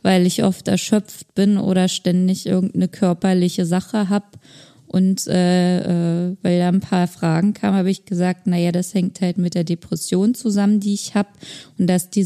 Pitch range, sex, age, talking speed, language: 175-205 Hz, female, 20-39, 175 wpm, German